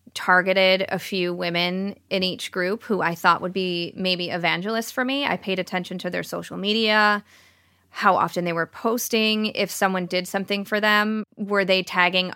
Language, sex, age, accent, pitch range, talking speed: English, female, 20-39, American, 170-195 Hz, 180 wpm